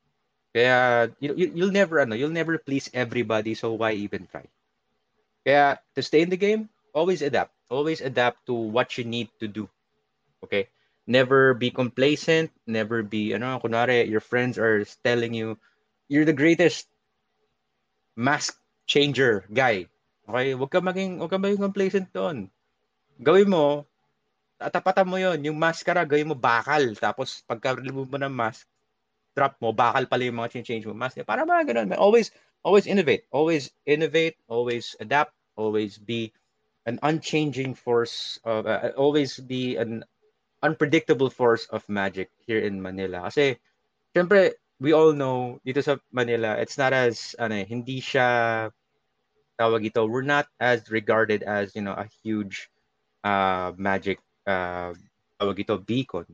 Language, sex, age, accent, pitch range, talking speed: English, male, 20-39, Filipino, 110-150 Hz, 145 wpm